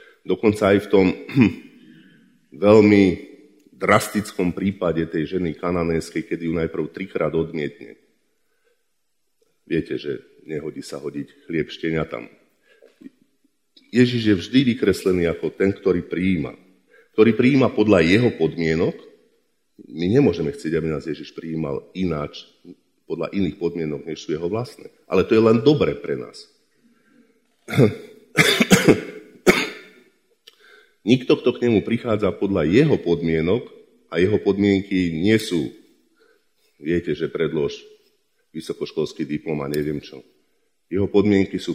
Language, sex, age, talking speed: Slovak, male, 50-69, 115 wpm